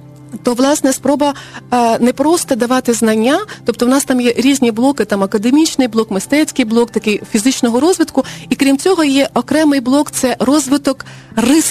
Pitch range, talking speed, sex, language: 235-295 Hz, 165 wpm, female, Ukrainian